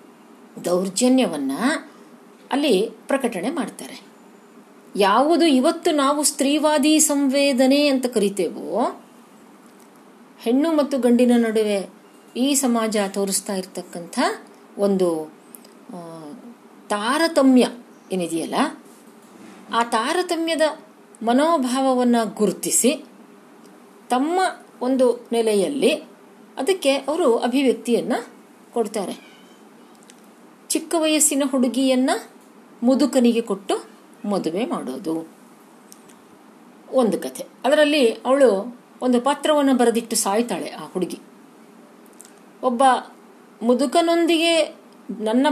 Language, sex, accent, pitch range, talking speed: Kannada, female, native, 225-300 Hz, 70 wpm